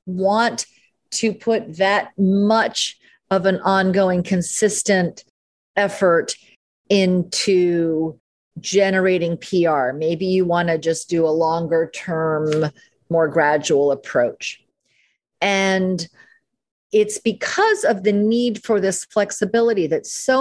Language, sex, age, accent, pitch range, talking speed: English, female, 40-59, American, 165-235 Hz, 105 wpm